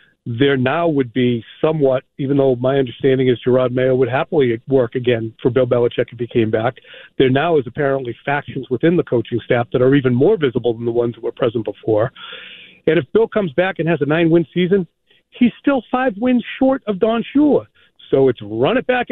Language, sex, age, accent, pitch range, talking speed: English, male, 40-59, American, 130-180 Hz, 210 wpm